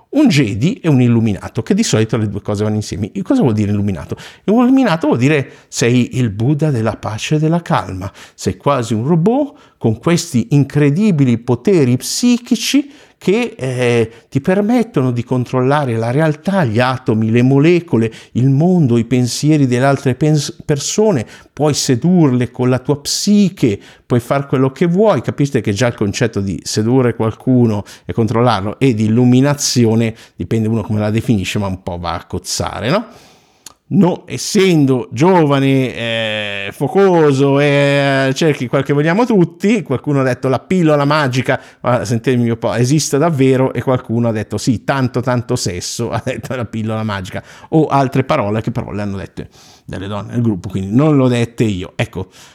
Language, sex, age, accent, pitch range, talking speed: Italian, male, 50-69, native, 115-150 Hz, 170 wpm